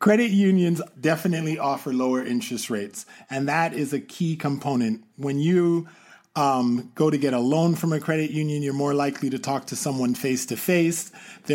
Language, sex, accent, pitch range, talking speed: English, male, American, 140-195 Hz, 180 wpm